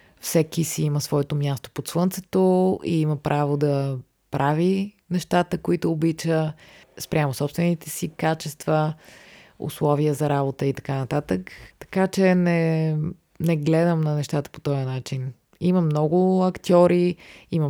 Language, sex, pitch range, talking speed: Bulgarian, female, 135-170 Hz, 130 wpm